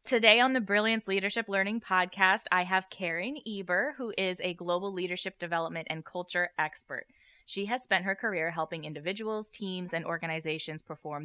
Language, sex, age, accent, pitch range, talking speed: English, female, 10-29, American, 155-195 Hz, 165 wpm